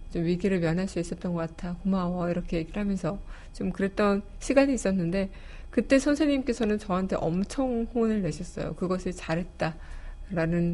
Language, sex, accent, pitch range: Korean, female, native, 175-220 Hz